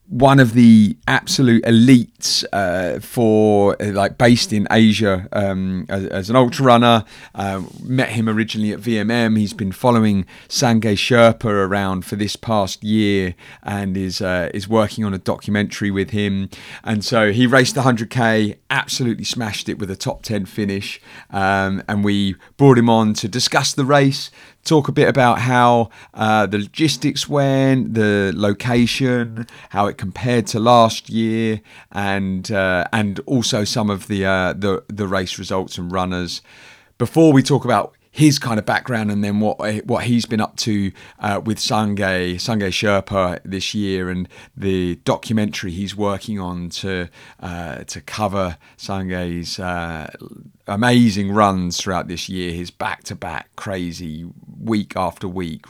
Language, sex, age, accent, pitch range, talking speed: English, male, 30-49, British, 95-115 Hz, 155 wpm